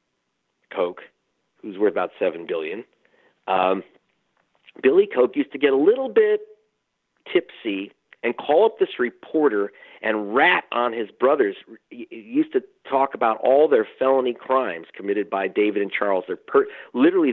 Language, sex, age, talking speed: English, male, 50-69, 145 wpm